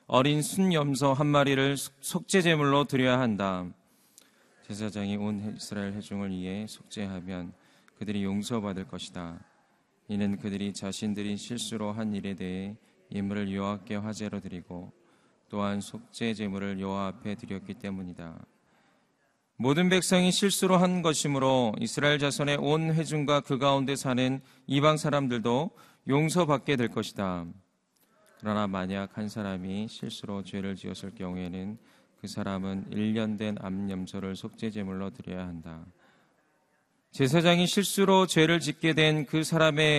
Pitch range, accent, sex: 100-140 Hz, native, male